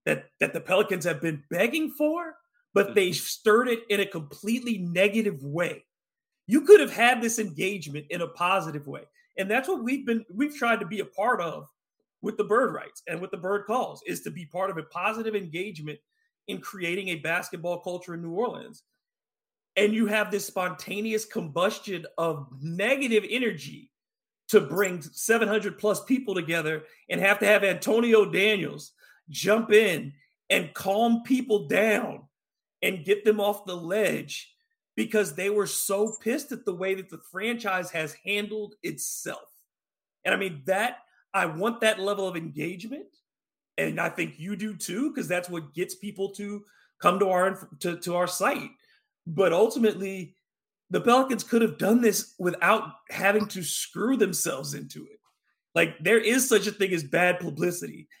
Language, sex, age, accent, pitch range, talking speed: English, male, 40-59, American, 180-225 Hz, 170 wpm